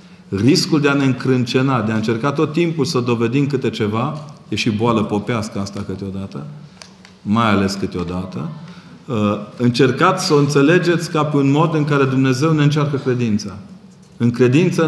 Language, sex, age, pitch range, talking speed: Romanian, male, 40-59, 110-150 Hz, 155 wpm